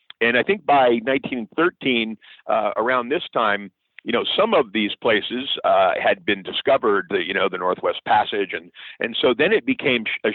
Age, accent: 50-69, American